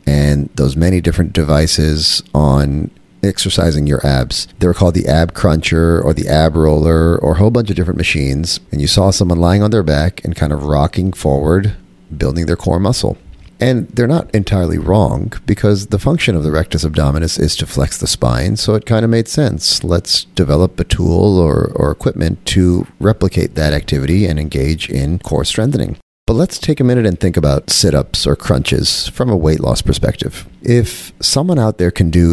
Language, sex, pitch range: English, male, 80-100 Hz